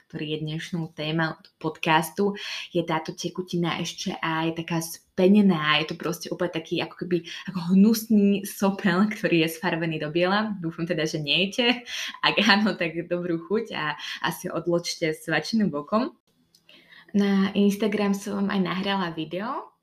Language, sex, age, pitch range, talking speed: Slovak, female, 20-39, 165-195 Hz, 145 wpm